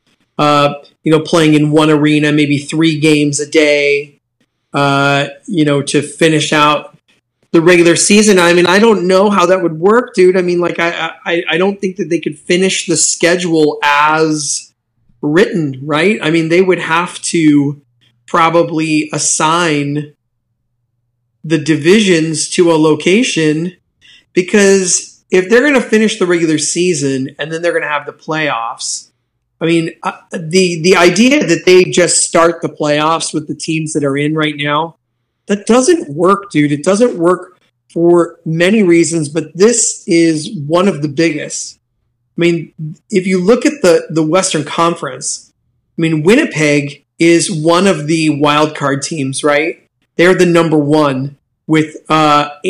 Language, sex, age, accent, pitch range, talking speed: English, male, 30-49, American, 150-180 Hz, 160 wpm